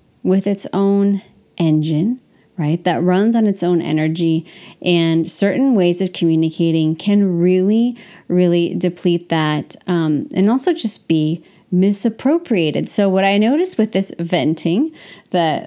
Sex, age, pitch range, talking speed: female, 30-49, 170-210 Hz, 135 wpm